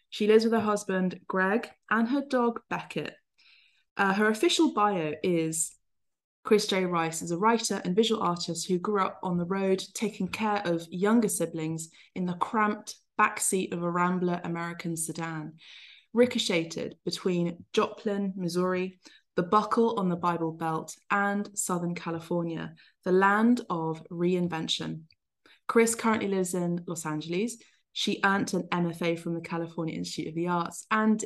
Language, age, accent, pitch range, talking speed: English, 20-39, British, 165-210 Hz, 150 wpm